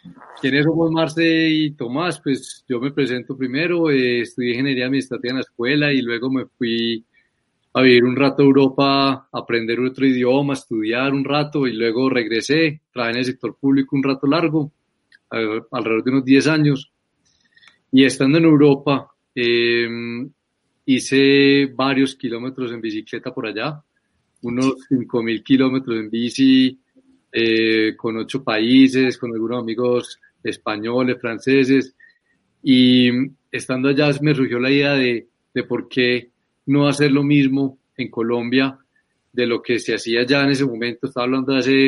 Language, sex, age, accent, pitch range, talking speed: Spanish, male, 30-49, Colombian, 120-140 Hz, 155 wpm